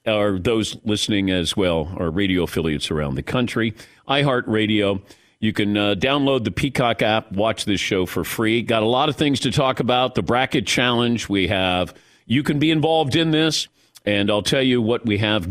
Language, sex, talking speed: English, male, 195 wpm